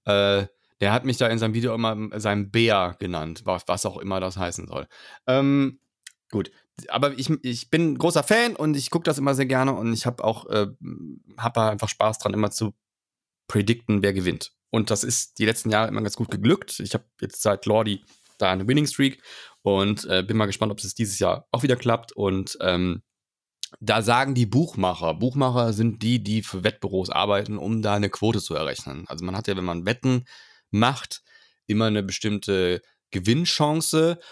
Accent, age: German, 30-49